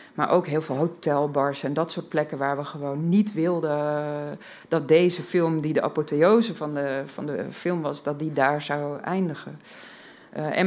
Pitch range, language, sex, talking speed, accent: 150-185 Hz, Dutch, female, 175 wpm, Dutch